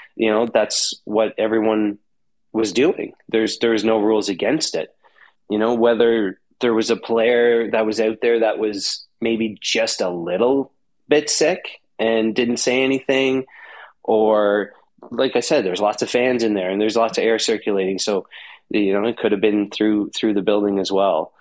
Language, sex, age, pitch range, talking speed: English, male, 20-39, 110-120 Hz, 180 wpm